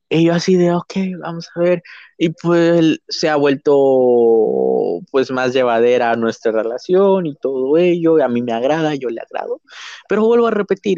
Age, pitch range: 20-39, 115-150 Hz